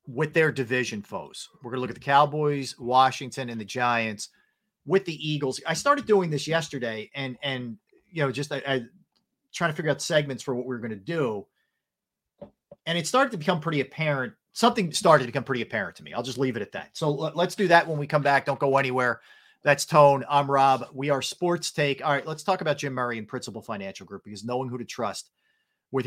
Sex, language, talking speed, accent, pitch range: male, English, 225 wpm, American, 120-150 Hz